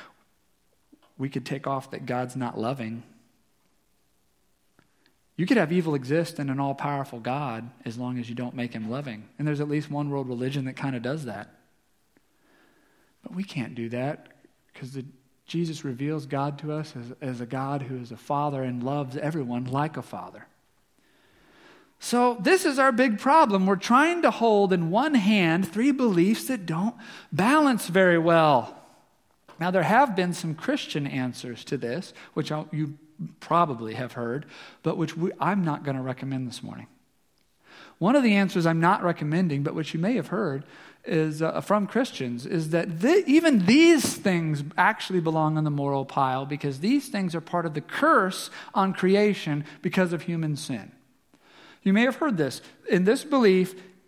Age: 40-59